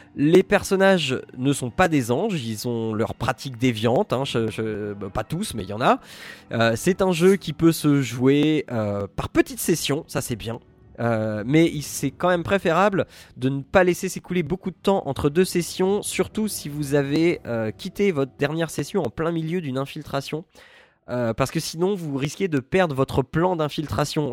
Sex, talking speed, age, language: male, 190 wpm, 20-39, French